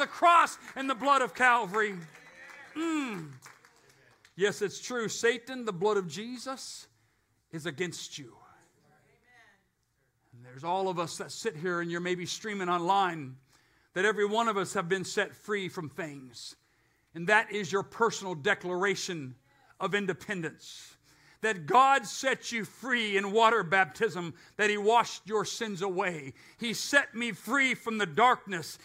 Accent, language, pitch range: American, English, 195-255 Hz